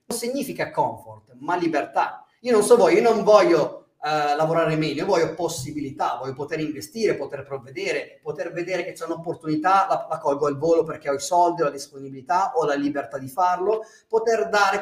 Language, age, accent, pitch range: Italian, 30-49, native, 150-215 Hz